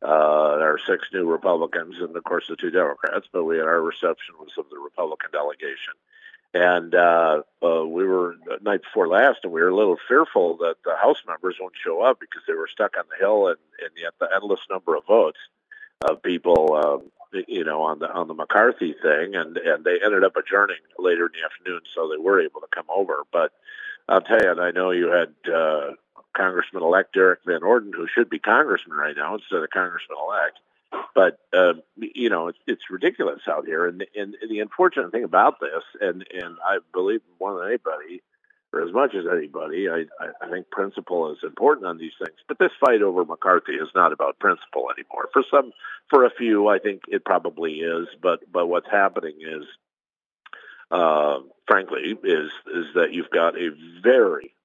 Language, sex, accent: English, male, American